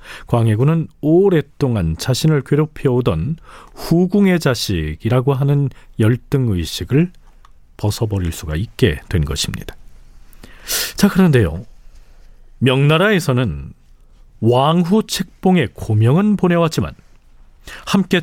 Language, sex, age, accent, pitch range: Korean, male, 40-59, native, 95-155 Hz